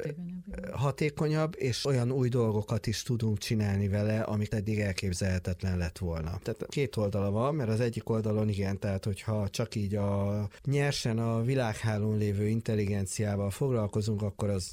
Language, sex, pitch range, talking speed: Hungarian, male, 100-115 Hz, 145 wpm